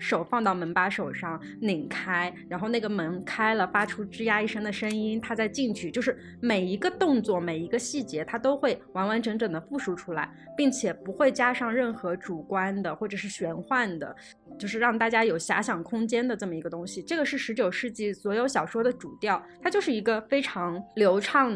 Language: Chinese